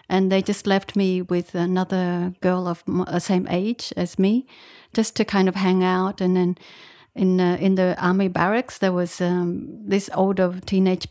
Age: 30-49